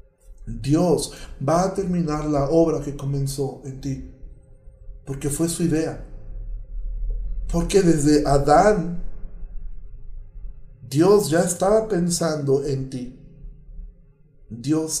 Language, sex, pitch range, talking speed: Spanish, male, 140-180 Hz, 95 wpm